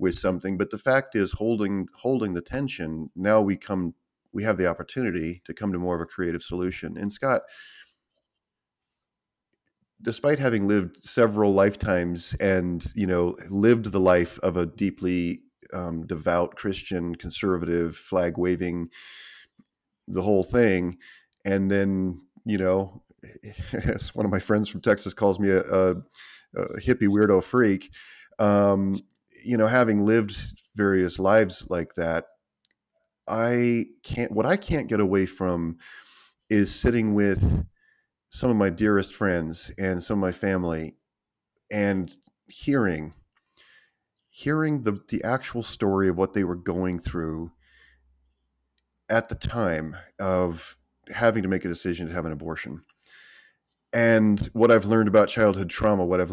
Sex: male